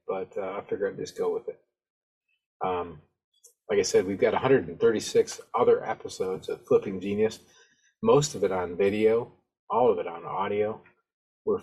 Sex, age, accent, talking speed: male, 30-49, American, 165 wpm